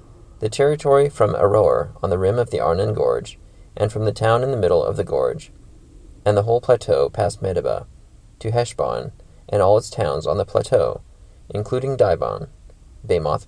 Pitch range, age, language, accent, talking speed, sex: 100-145 Hz, 30-49, English, American, 175 wpm, male